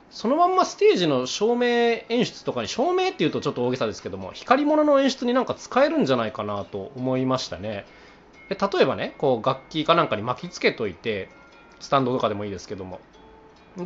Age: 20-39